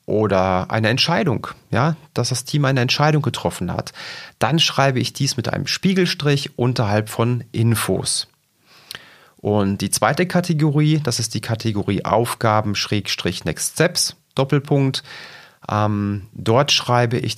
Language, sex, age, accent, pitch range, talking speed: German, male, 30-49, German, 105-140 Hz, 130 wpm